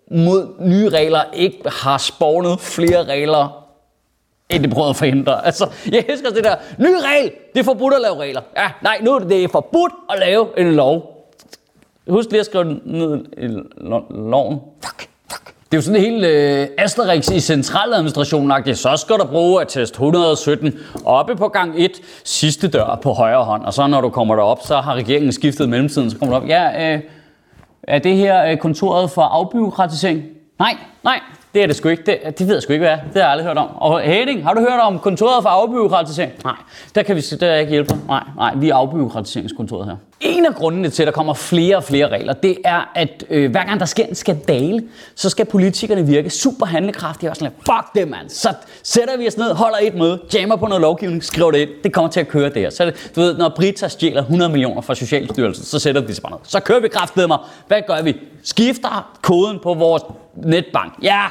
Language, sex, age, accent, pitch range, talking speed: Danish, male, 30-49, native, 150-200 Hz, 215 wpm